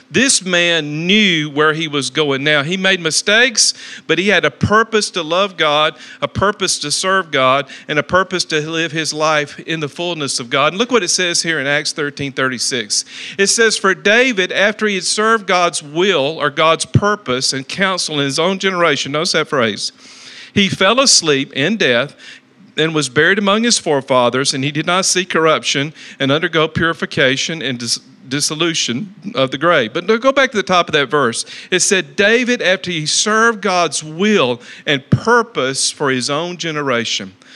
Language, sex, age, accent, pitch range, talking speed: English, male, 50-69, American, 145-190 Hz, 185 wpm